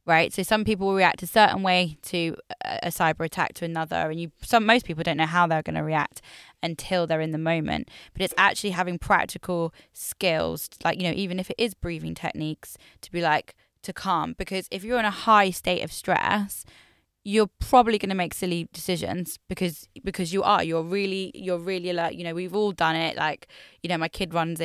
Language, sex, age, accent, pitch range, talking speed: English, female, 10-29, British, 160-190 Hz, 215 wpm